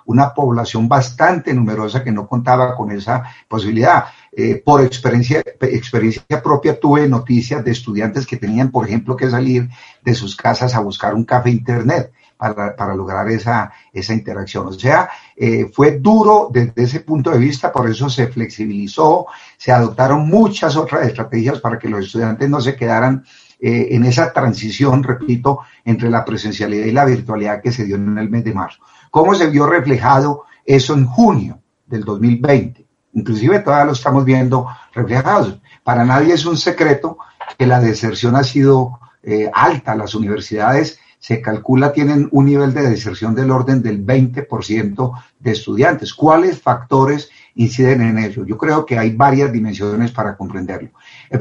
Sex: male